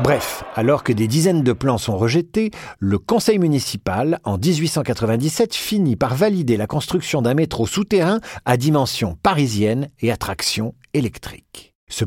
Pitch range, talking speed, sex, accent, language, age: 110-160 Hz, 150 wpm, male, French, French, 50-69